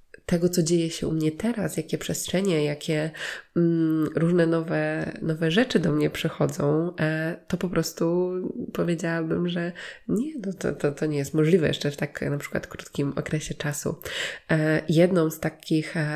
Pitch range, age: 150-170 Hz, 20-39